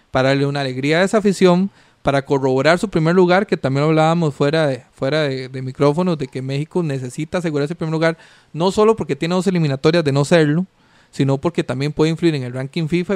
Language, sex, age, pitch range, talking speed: Spanish, male, 30-49, 140-180 Hz, 215 wpm